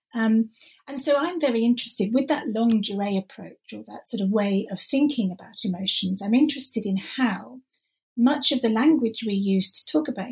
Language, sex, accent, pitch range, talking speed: English, female, British, 185-240 Hz, 185 wpm